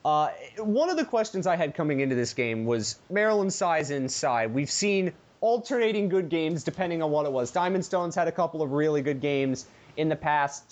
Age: 30-49